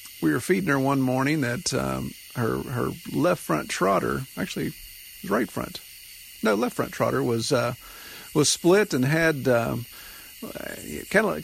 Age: 50-69